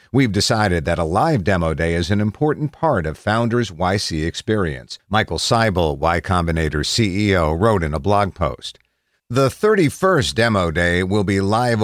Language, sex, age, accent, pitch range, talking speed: English, male, 50-69, American, 85-115 Hz, 160 wpm